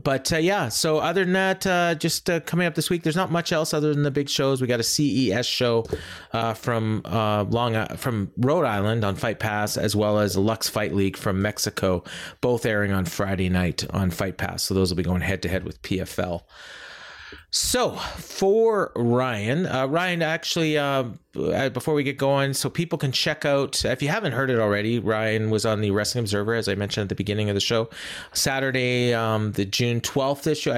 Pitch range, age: 100-135 Hz, 30-49